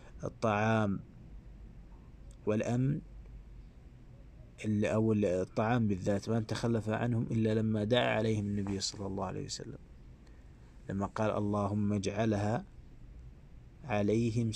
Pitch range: 95-115 Hz